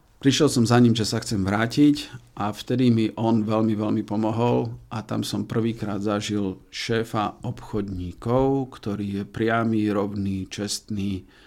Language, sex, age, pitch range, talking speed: Slovak, male, 50-69, 100-115 Hz, 140 wpm